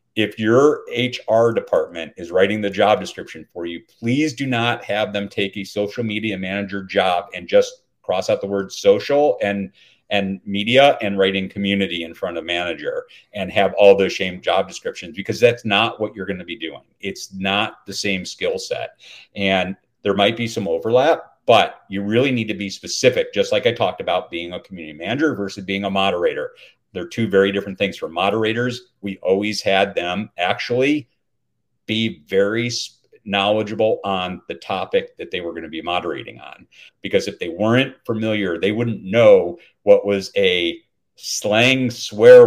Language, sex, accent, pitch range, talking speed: English, male, American, 100-130 Hz, 180 wpm